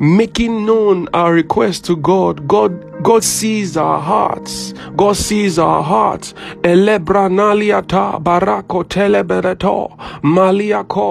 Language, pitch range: English, 170-200 Hz